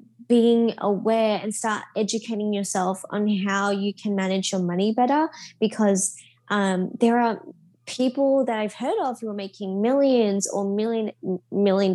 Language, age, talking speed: English, 10-29, 150 wpm